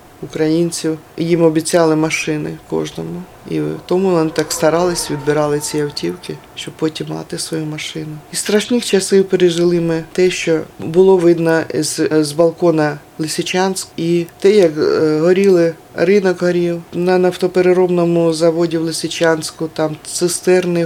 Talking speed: 125 wpm